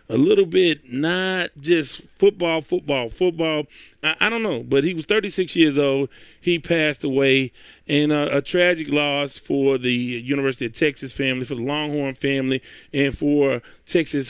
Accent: American